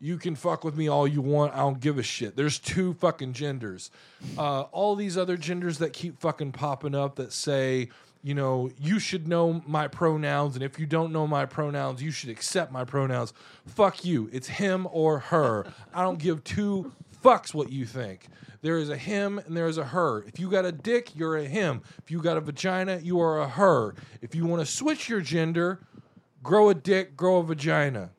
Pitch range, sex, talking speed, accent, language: 140-180 Hz, male, 215 wpm, American, English